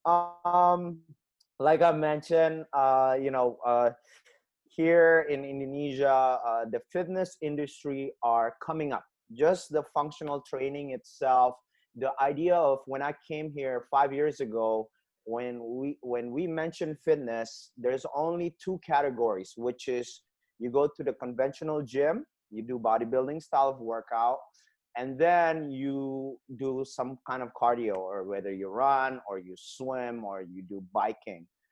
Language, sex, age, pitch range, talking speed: English, male, 30-49, 125-160 Hz, 145 wpm